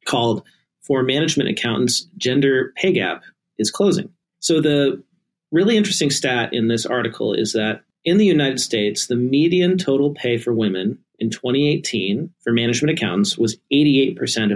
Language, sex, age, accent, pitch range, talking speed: English, male, 40-59, American, 115-145 Hz, 150 wpm